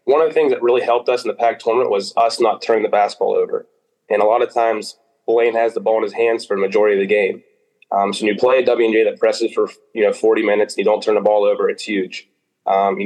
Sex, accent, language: male, American, English